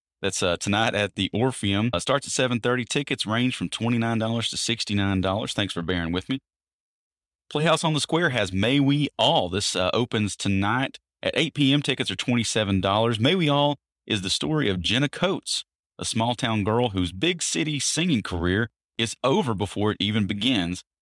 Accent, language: American, English